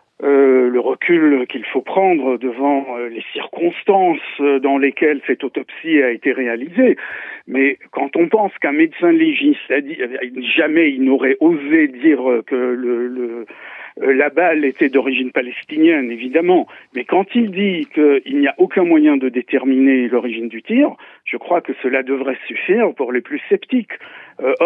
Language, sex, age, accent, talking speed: French, male, 60-79, French, 155 wpm